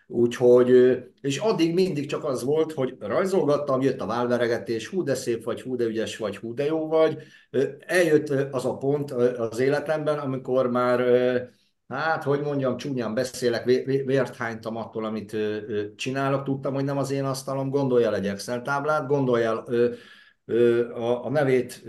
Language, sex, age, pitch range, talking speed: Hungarian, male, 50-69, 115-145 Hz, 145 wpm